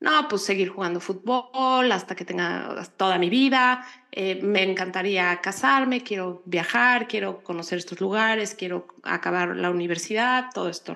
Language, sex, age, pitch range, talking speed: Spanish, female, 30-49, 190-255 Hz, 150 wpm